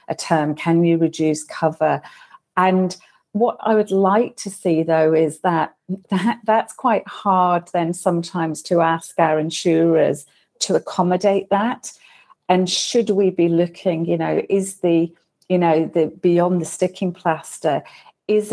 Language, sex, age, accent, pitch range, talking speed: English, female, 40-59, British, 165-190 Hz, 150 wpm